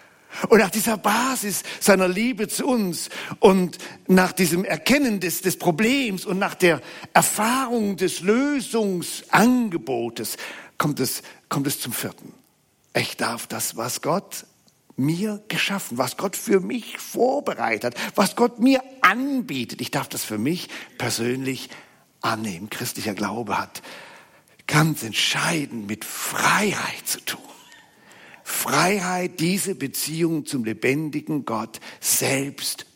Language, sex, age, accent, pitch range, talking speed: German, male, 50-69, German, 130-200 Hz, 120 wpm